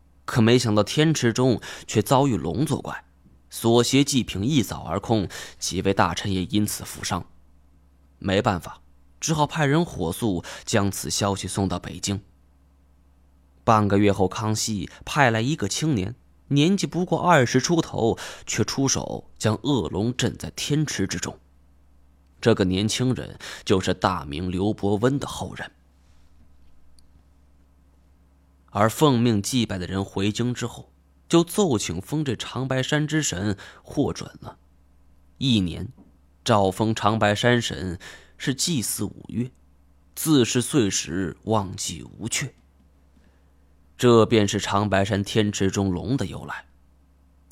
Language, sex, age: Chinese, male, 20-39